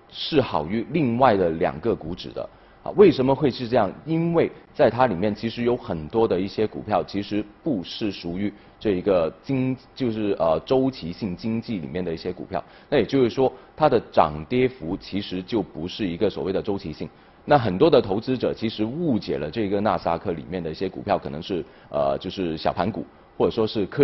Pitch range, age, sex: 90-120 Hz, 30-49, male